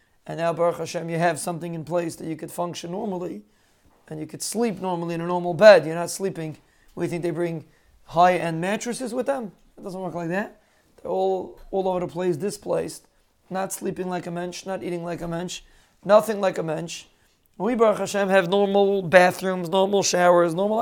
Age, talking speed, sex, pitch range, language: 40-59, 200 wpm, male, 165-195 Hz, English